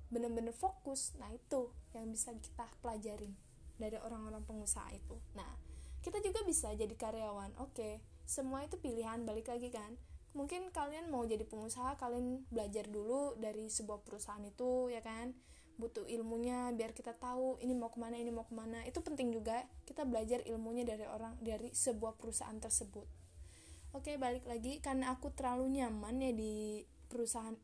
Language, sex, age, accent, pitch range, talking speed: Indonesian, female, 10-29, native, 225-260 Hz, 155 wpm